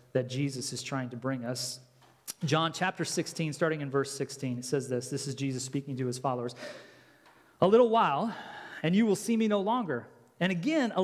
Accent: American